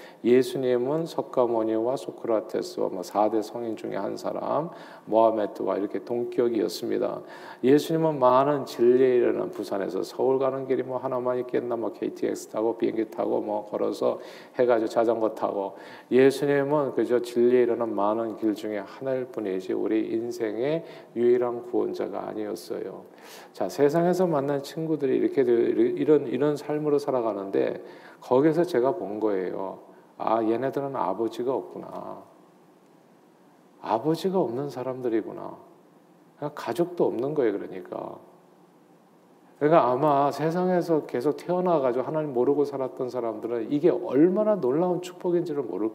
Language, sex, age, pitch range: Korean, male, 40-59, 120-165 Hz